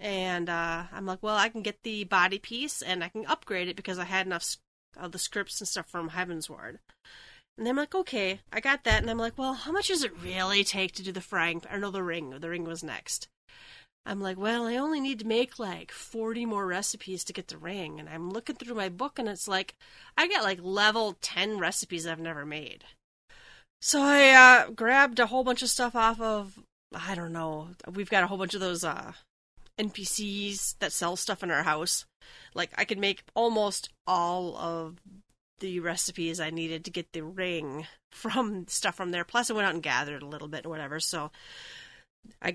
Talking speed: 215 wpm